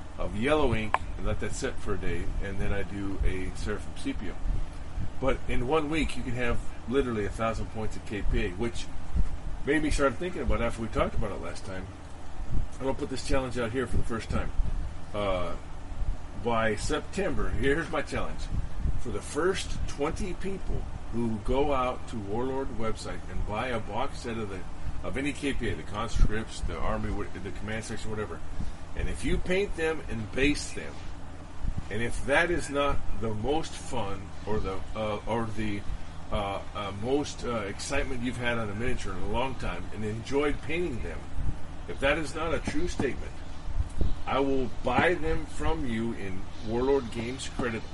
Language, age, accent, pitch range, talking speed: English, 40-59, American, 85-120 Hz, 185 wpm